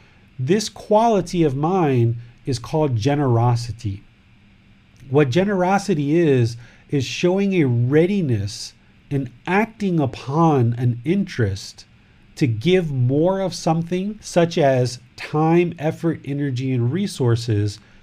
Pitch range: 115-165 Hz